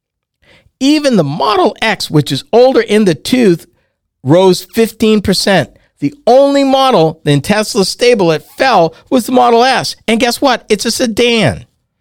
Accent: American